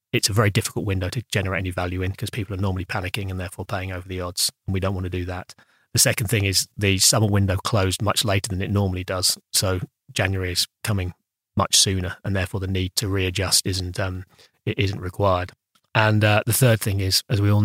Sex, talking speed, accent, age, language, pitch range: male, 230 wpm, British, 30-49, English, 95-105 Hz